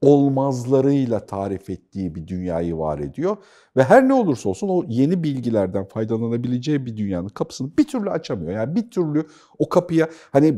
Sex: male